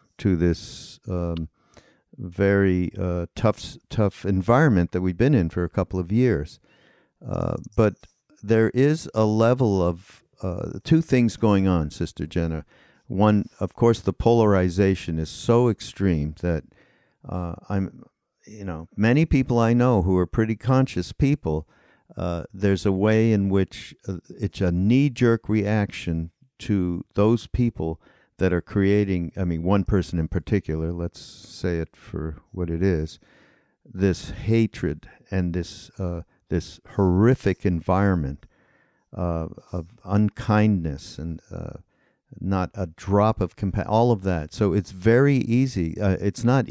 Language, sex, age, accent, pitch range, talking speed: English, male, 50-69, American, 90-110 Hz, 140 wpm